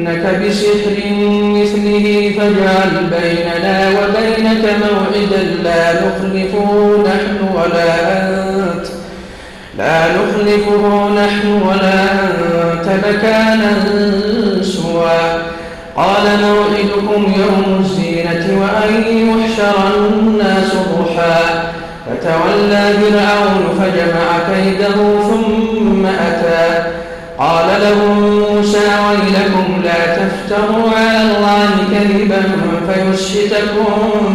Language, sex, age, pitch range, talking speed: Arabic, male, 40-59, 170-205 Hz, 75 wpm